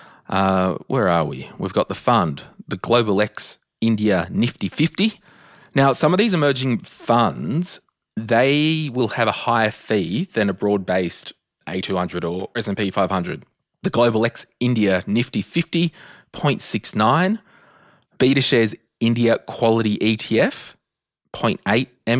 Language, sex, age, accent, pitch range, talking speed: English, male, 30-49, Australian, 95-140 Hz, 125 wpm